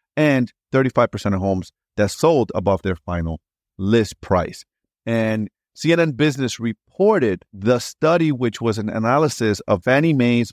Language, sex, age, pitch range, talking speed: English, male, 30-49, 95-125 Hz, 135 wpm